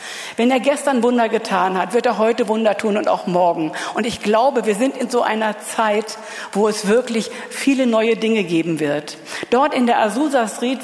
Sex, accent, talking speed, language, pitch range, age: female, German, 200 wpm, German, 210-250 Hz, 50-69